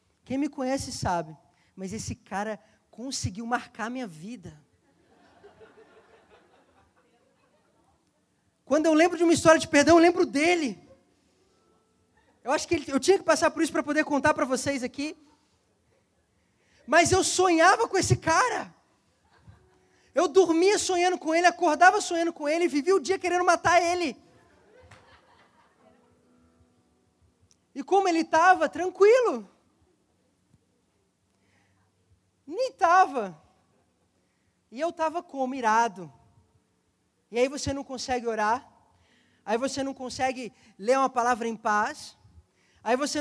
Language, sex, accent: Portuguese, male, Brazilian